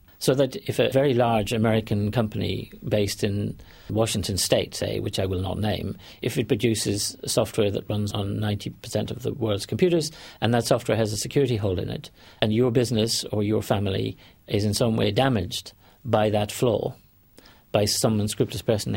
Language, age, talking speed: English, 50-69, 180 wpm